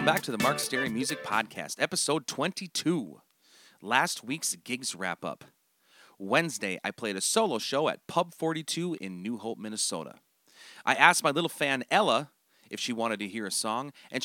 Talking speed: 175 wpm